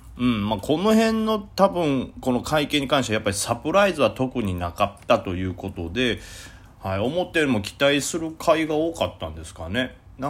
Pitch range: 90-120 Hz